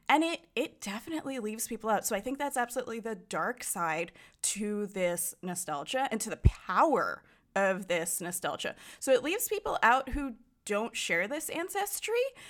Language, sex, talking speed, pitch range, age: English, female, 170 wpm, 195-275 Hz, 20-39